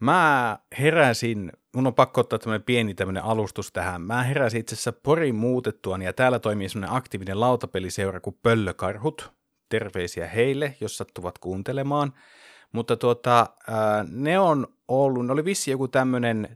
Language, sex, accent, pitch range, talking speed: Finnish, male, native, 95-130 Hz, 145 wpm